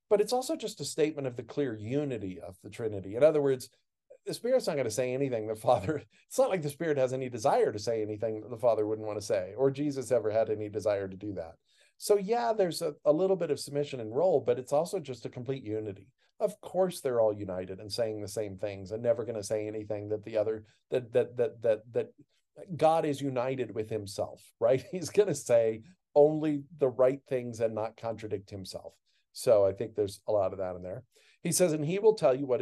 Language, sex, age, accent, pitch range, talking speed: English, male, 50-69, American, 110-150 Hz, 235 wpm